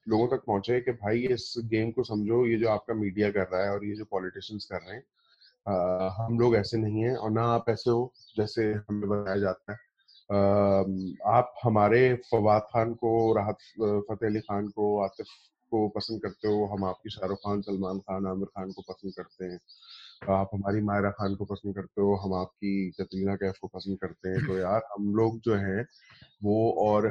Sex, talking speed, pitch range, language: male, 195 wpm, 100-120 Hz, English